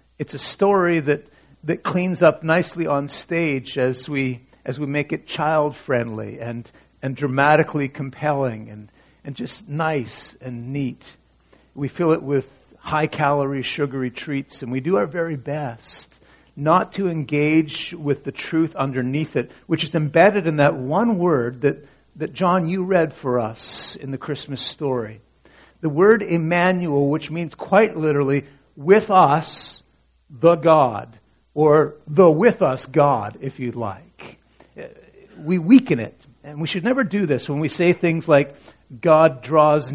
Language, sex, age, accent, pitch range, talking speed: English, male, 50-69, American, 135-175 Hz, 150 wpm